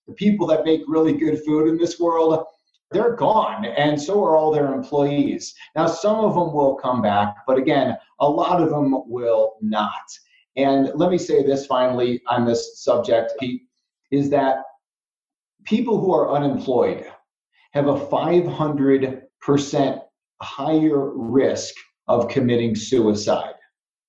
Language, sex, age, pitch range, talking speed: English, male, 30-49, 125-160 Hz, 140 wpm